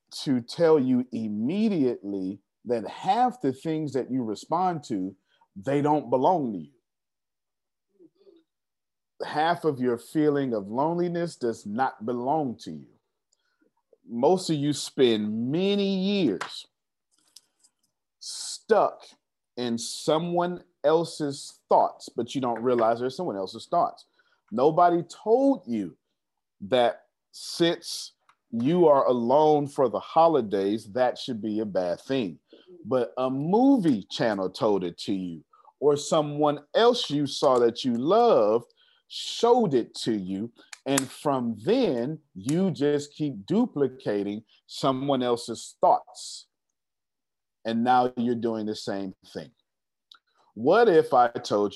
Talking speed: 120 wpm